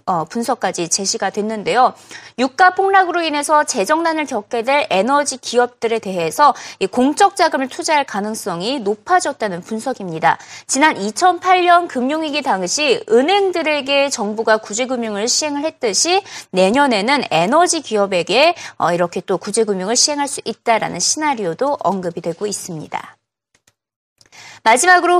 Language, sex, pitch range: Korean, female, 215-340 Hz